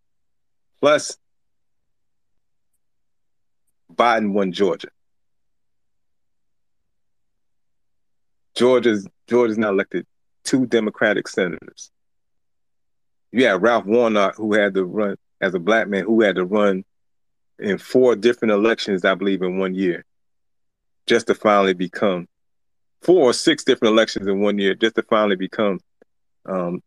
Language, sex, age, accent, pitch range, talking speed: English, male, 40-59, American, 95-115 Hz, 120 wpm